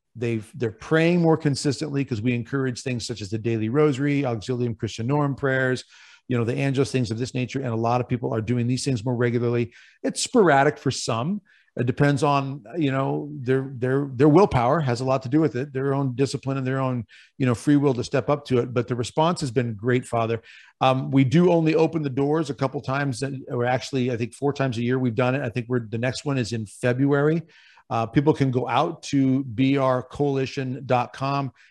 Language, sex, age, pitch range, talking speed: English, male, 50-69, 125-145 Hz, 220 wpm